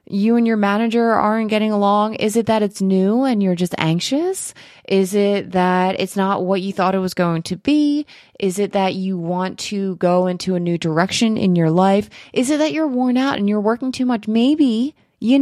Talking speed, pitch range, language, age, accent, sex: 220 wpm, 160-225 Hz, English, 20-39, American, female